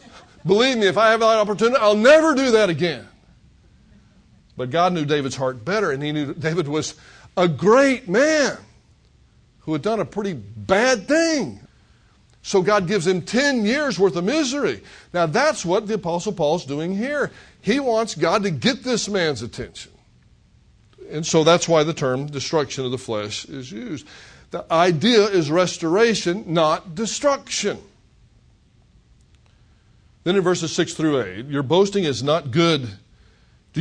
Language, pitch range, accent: English, 130-205 Hz, American